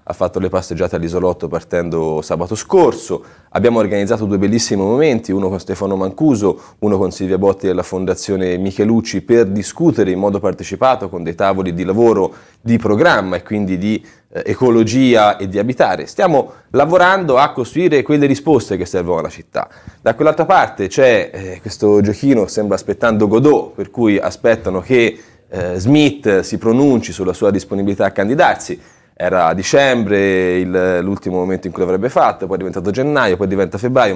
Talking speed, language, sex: 165 wpm, Italian, male